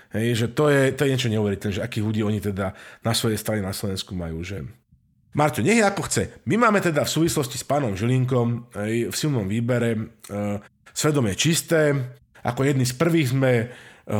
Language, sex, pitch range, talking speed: Slovak, male, 115-145 Hz, 190 wpm